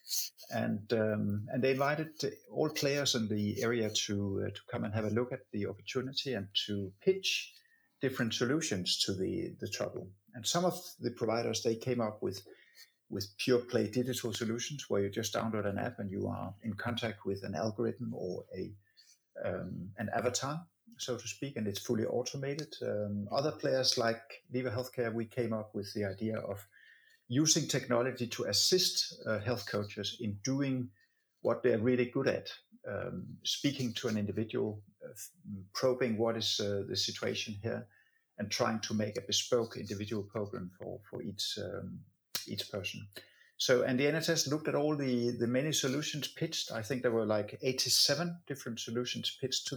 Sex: male